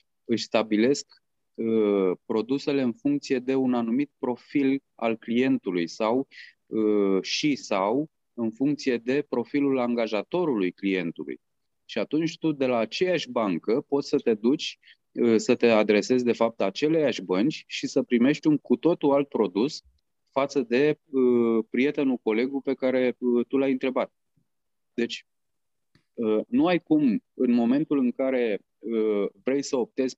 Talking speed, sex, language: 130 wpm, male, Romanian